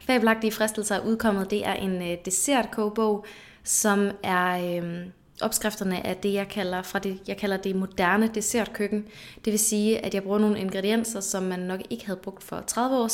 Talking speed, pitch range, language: 180 wpm, 190-220 Hz, English